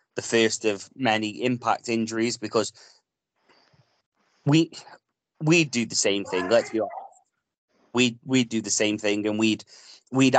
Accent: British